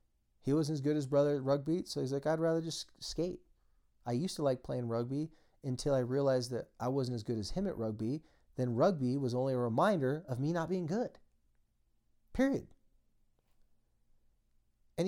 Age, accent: 30-49, American